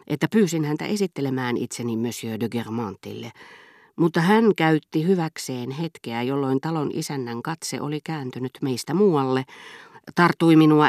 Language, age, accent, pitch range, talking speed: Finnish, 40-59, native, 120-165 Hz, 125 wpm